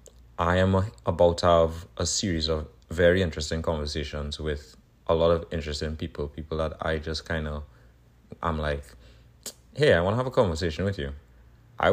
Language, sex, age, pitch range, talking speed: English, male, 30-49, 75-85 Hz, 175 wpm